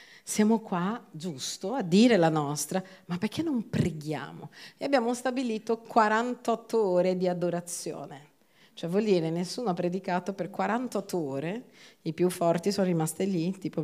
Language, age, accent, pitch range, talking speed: Italian, 40-59, native, 165-225 Hz, 145 wpm